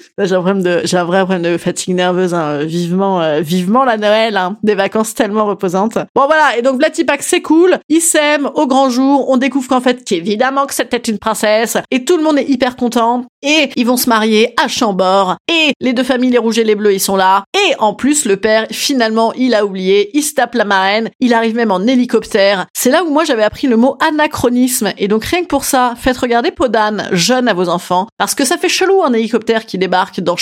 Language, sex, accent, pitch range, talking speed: French, female, French, 195-255 Hz, 235 wpm